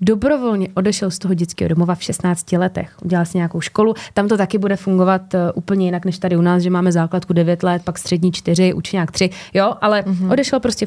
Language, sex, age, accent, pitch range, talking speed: Czech, female, 20-39, native, 180-215 Hz, 210 wpm